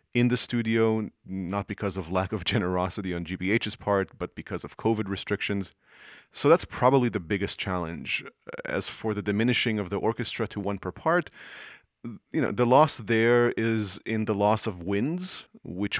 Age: 30-49